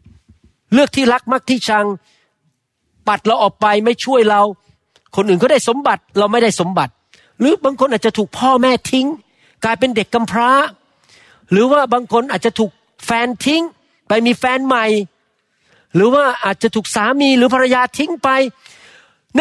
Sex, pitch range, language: male, 155-235 Hz, Thai